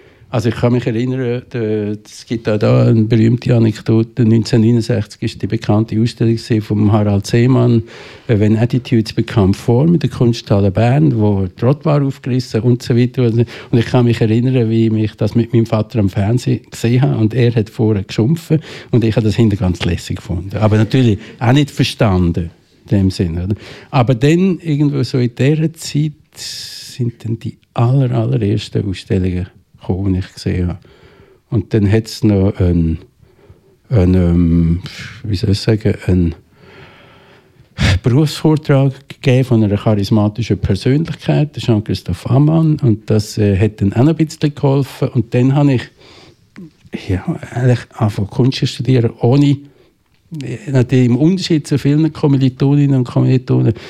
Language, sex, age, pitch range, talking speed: German, male, 60-79, 110-130 Hz, 150 wpm